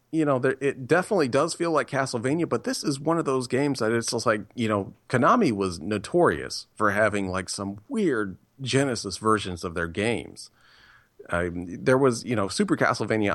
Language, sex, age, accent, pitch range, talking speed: English, male, 40-59, American, 95-125 Hz, 185 wpm